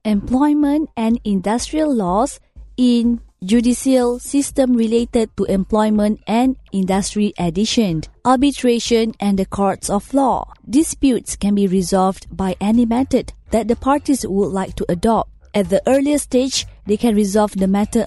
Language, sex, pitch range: English, female, 195-240 Hz